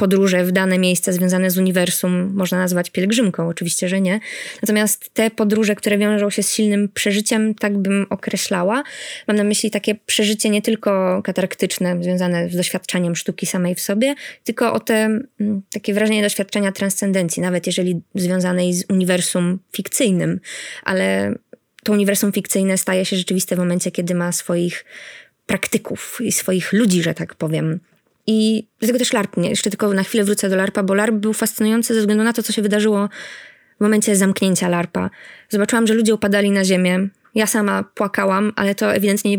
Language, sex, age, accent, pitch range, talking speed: Polish, female, 20-39, native, 185-215 Hz, 170 wpm